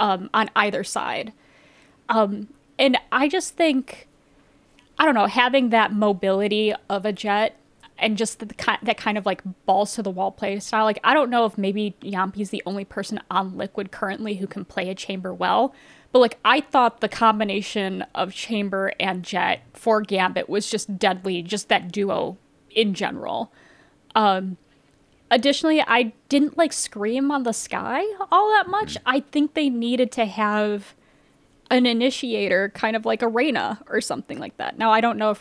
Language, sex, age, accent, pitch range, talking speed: English, female, 10-29, American, 195-240 Hz, 180 wpm